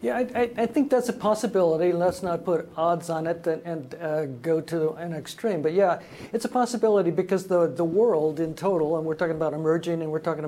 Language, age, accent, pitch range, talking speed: English, 60-79, American, 150-175 Hz, 220 wpm